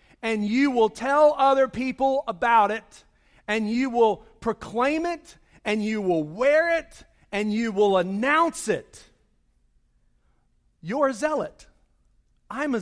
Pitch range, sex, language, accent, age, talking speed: 195-245 Hz, male, English, American, 40-59, 130 wpm